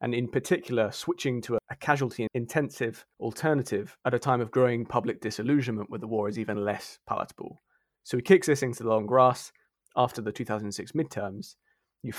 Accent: British